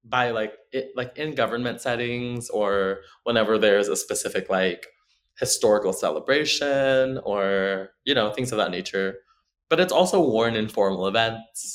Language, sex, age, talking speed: English, male, 20-39, 150 wpm